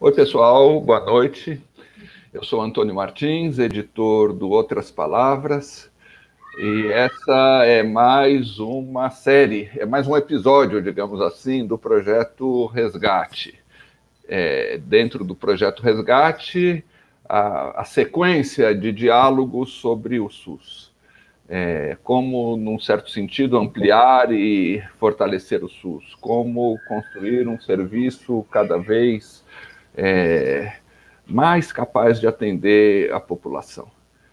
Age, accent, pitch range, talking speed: 60-79, Brazilian, 105-135 Hz, 110 wpm